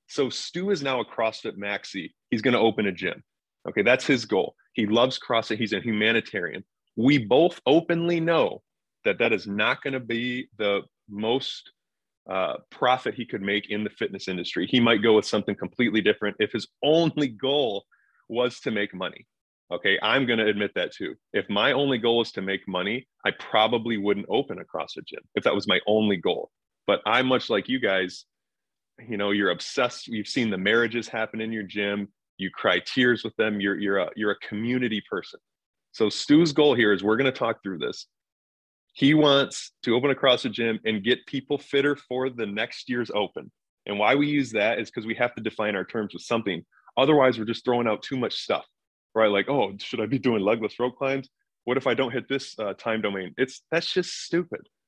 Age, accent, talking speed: 30-49, American, 210 wpm